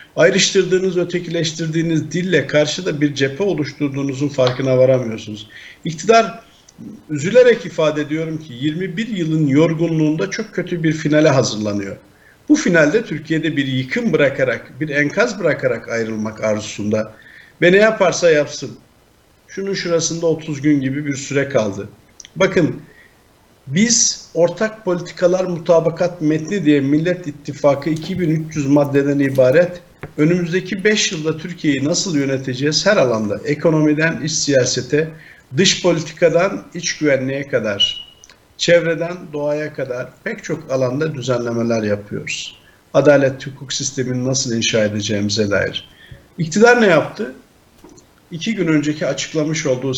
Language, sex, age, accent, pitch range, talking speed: Turkish, male, 50-69, native, 140-175 Hz, 115 wpm